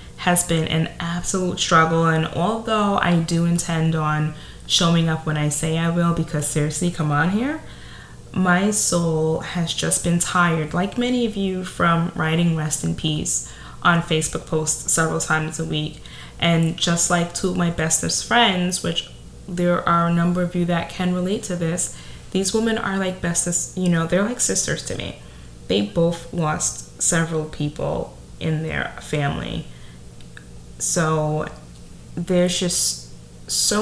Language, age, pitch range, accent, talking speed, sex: English, 20-39, 150-180 Hz, American, 160 wpm, female